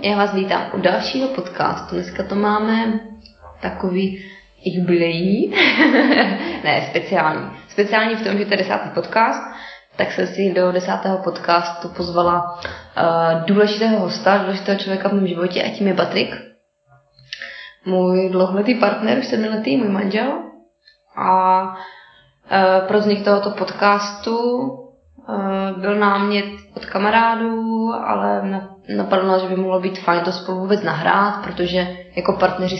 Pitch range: 180-205 Hz